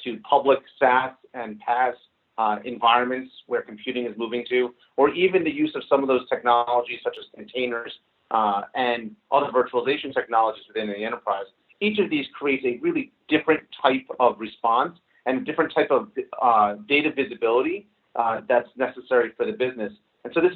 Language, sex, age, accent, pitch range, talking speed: English, male, 40-59, American, 120-150 Hz, 165 wpm